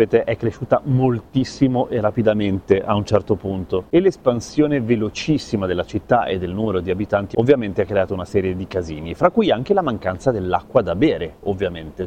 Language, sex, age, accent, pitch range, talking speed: Italian, male, 30-49, native, 100-130 Hz, 175 wpm